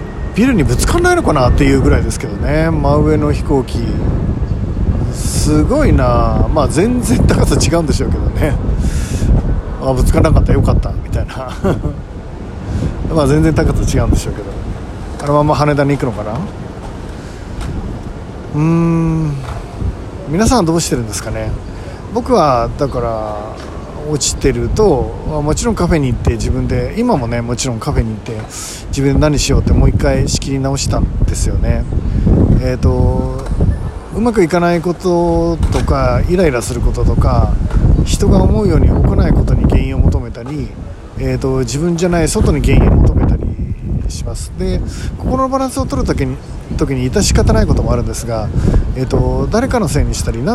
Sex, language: male, Japanese